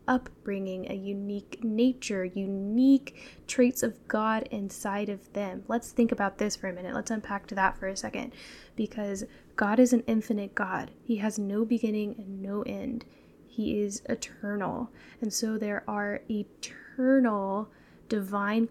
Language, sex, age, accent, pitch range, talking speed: English, female, 10-29, American, 205-235 Hz, 150 wpm